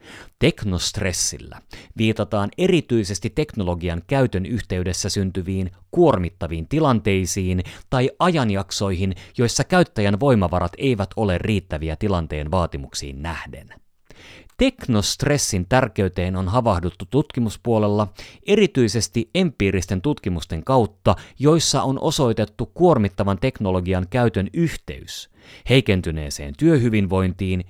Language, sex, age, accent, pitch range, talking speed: Finnish, male, 30-49, native, 90-125 Hz, 80 wpm